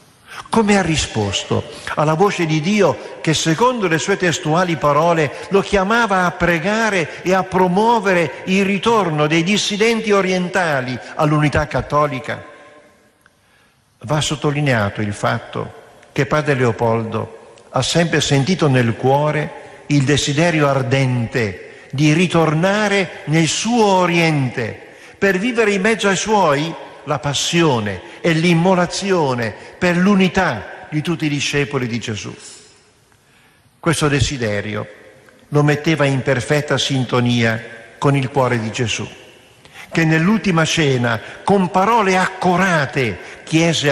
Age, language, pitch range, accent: 50-69, Italian, 125-180 Hz, native